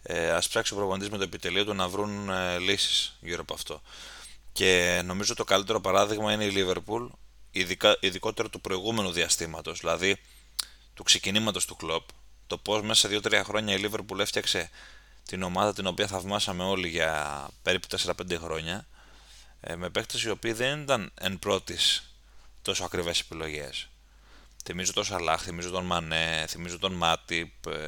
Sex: male